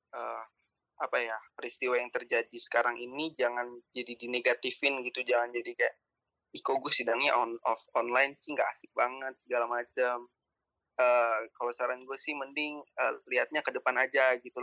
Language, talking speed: Indonesian, 160 wpm